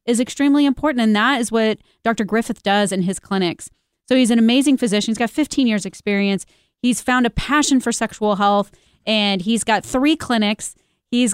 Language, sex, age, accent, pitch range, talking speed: English, female, 30-49, American, 200-235 Hz, 190 wpm